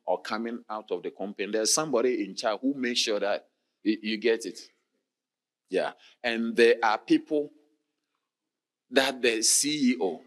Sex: male